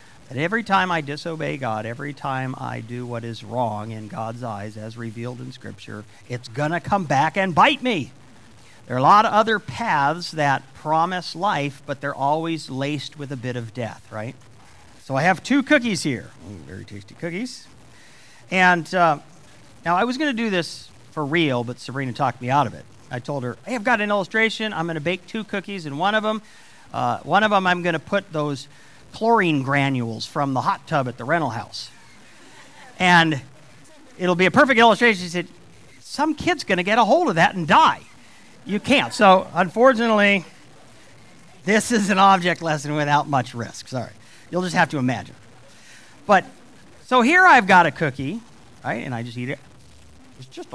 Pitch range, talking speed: 125-195 Hz, 195 wpm